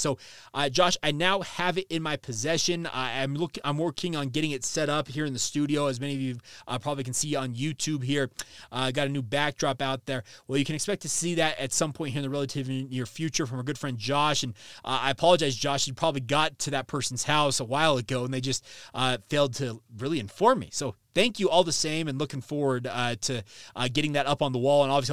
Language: English